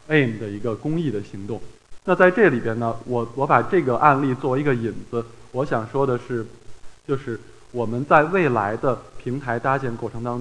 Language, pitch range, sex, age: Chinese, 115-145 Hz, male, 20-39